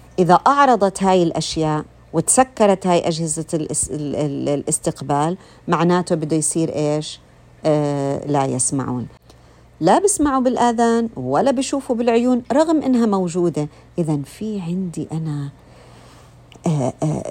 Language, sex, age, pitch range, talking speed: Arabic, female, 50-69, 140-200 Hz, 110 wpm